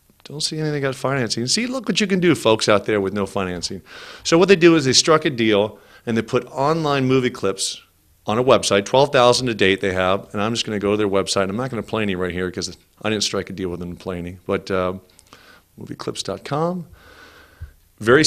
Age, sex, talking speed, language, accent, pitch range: 40-59, male, 235 wpm, English, American, 100-140 Hz